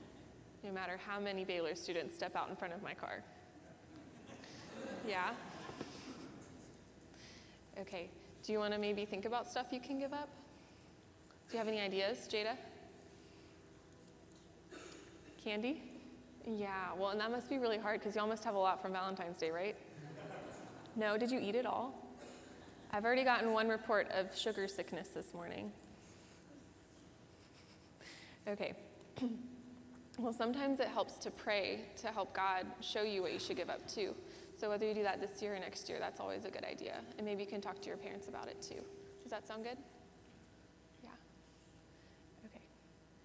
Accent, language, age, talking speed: American, English, 20-39, 165 wpm